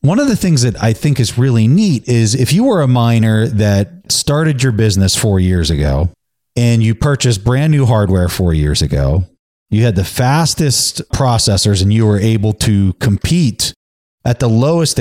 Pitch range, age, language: 100-130 Hz, 30-49, English